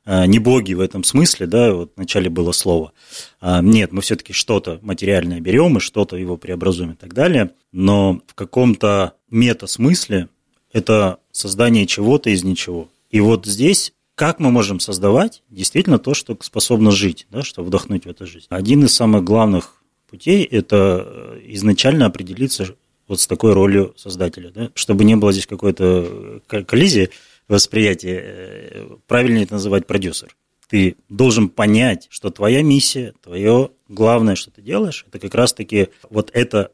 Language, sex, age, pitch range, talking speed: Russian, male, 20-39, 95-115 Hz, 150 wpm